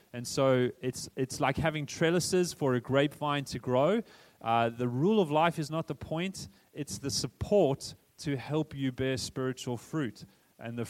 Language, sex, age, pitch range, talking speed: English, male, 30-49, 125-145 Hz, 175 wpm